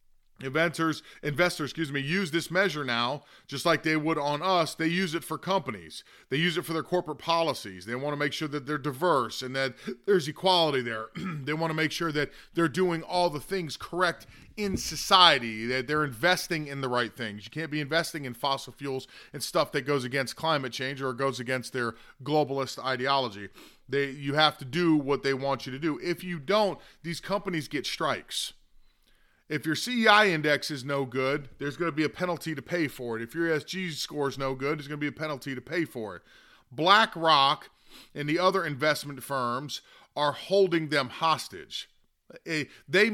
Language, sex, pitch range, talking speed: English, male, 140-175 Hz, 200 wpm